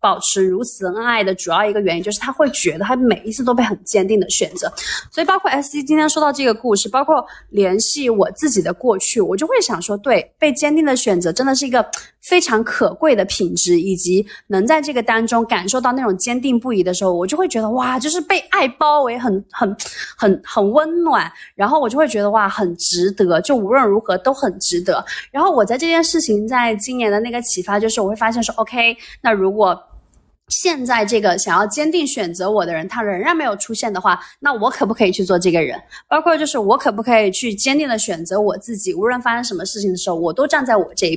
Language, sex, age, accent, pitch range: Chinese, female, 20-39, native, 195-270 Hz